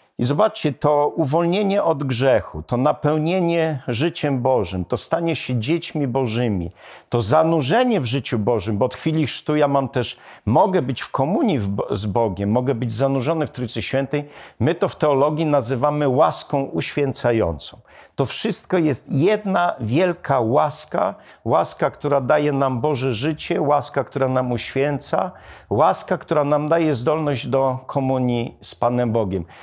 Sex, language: male, Polish